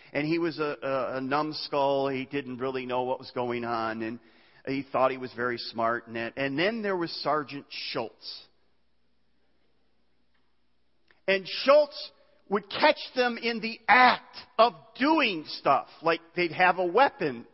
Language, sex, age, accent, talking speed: English, male, 40-59, American, 155 wpm